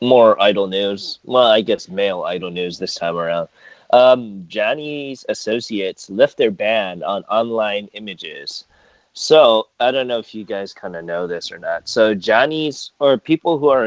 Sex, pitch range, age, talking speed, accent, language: male, 90-120 Hz, 20-39, 175 wpm, American, English